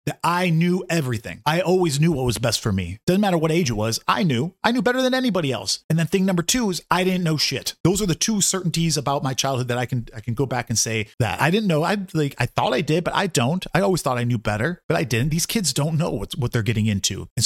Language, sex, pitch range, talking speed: English, male, 125-165 Hz, 290 wpm